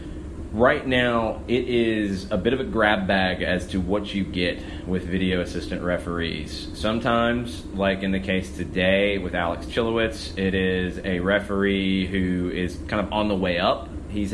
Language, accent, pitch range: English, American, 85-105 Hz